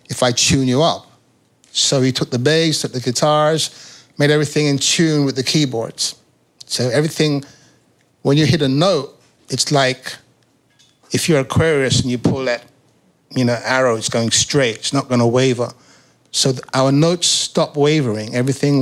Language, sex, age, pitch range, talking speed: English, male, 60-79, 125-145 Hz, 160 wpm